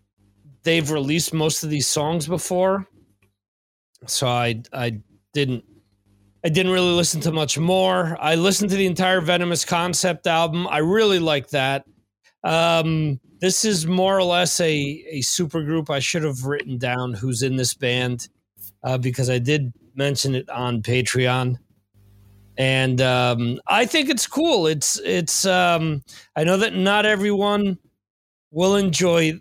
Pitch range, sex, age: 125-190 Hz, male, 40-59